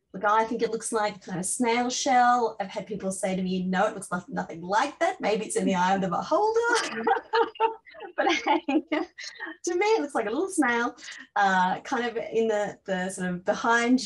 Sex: female